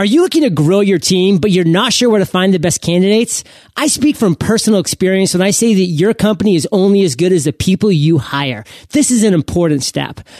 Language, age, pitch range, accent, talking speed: English, 30-49, 160-215 Hz, American, 240 wpm